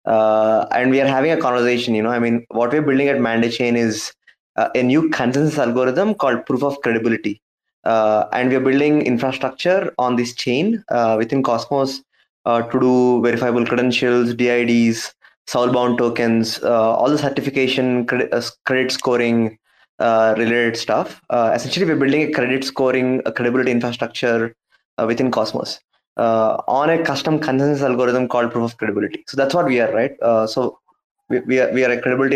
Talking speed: 180 wpm